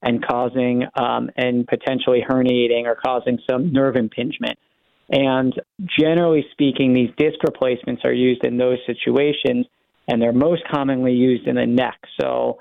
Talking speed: 150 wpm